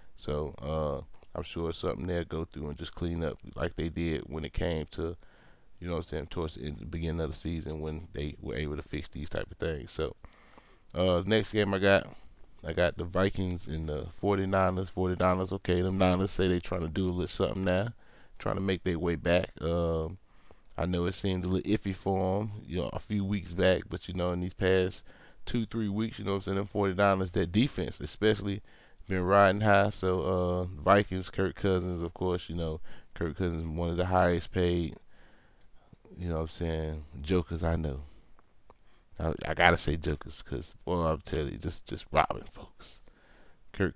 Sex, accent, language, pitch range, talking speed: male, American, English, 80-95 Hz, 210 wpm